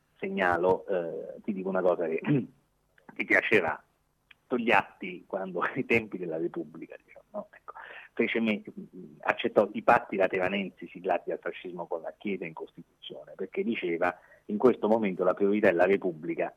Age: 40-59